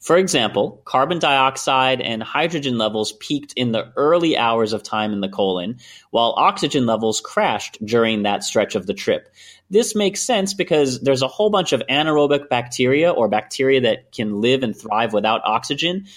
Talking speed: 175 wpm